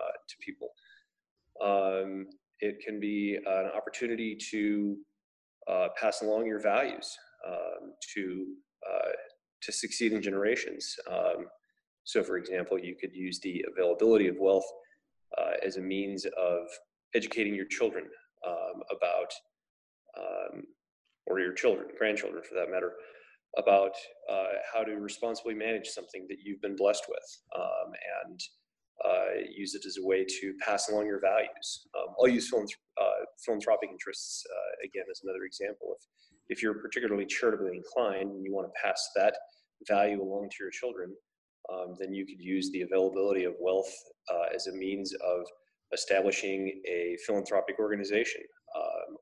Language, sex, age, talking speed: English, male, 30-49, 150 wpm